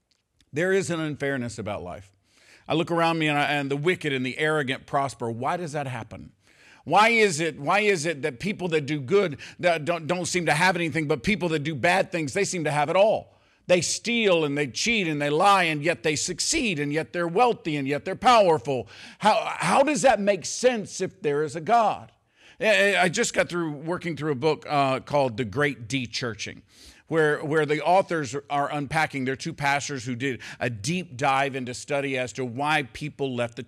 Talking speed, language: 210 wpm, English